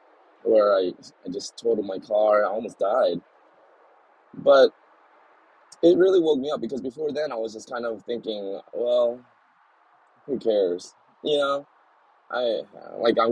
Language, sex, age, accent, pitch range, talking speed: English, male, 20-39, American, 120-190 Hz, 150 wpm